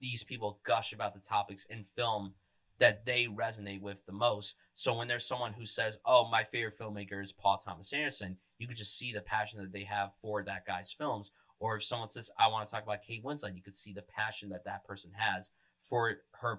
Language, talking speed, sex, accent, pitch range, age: English, 230 wpm, male, American, 100-120 Hz, 20-39